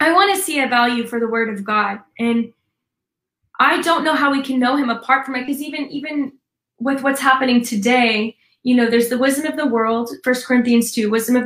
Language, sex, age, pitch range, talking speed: English, female, 10-29, 230-265 Hz, 225 wpm